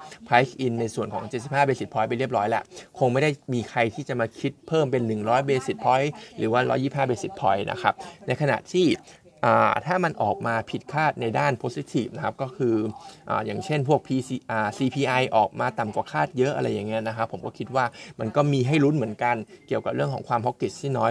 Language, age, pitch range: Thai, 20-39, 115-140 Hz